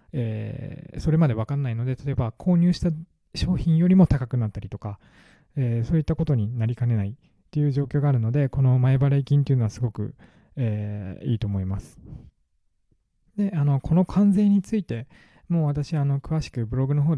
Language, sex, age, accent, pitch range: Japanese, male, 20-39, native, 115-160 Hz